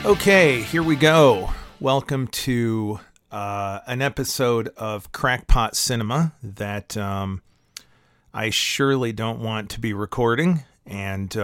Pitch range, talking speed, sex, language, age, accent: 105-130 Hz, 115 wpm, male, English, 40-59, American